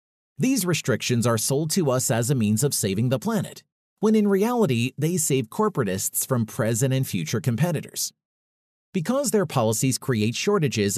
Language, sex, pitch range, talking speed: English, male, 120-175 Hz, 160 wpm